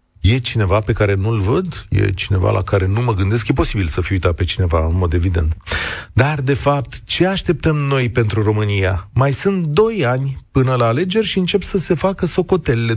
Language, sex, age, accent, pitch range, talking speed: Romanian, male, 30-49, native, 110-165 Hz, 205 wpm